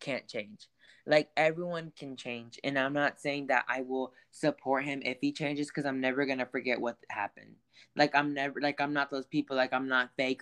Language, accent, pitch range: English, American, 130-160 Hz